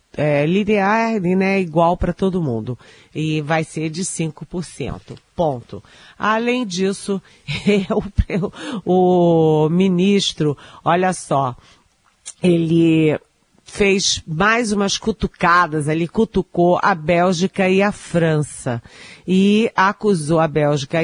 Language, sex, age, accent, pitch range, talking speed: Portuguese, female, 40-59, Brazilian, 155-195 Hz, 95 wpm